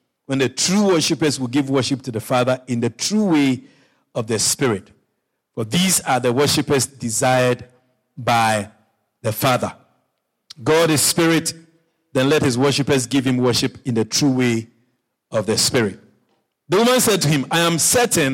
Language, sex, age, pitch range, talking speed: English, male, 50-69, 125-165 Hz, 165 wpm